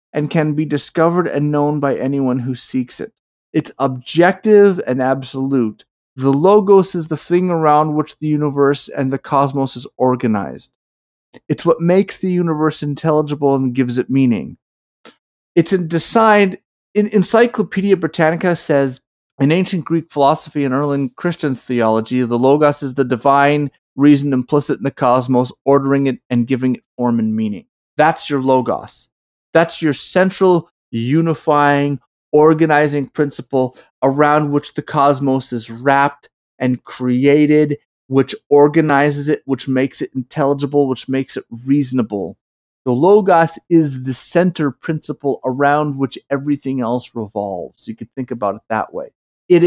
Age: 40-59